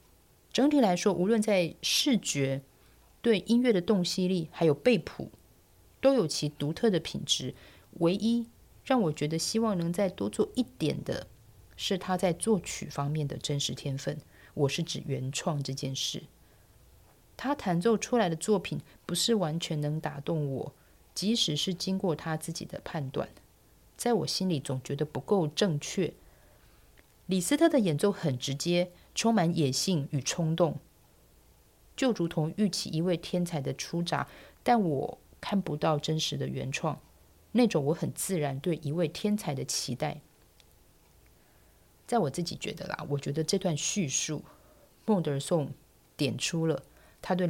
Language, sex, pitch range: Chinese, female, 145-195 Hz